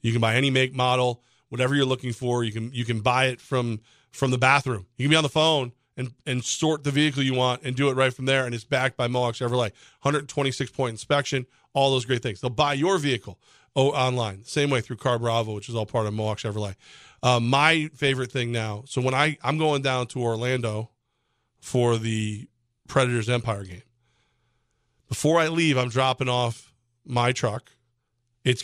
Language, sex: English, male